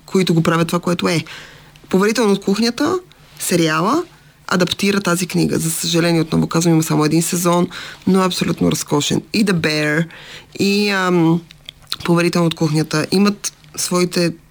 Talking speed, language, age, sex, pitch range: 140 wpm, Bulgarian, 20-39, female, 160-180 Hz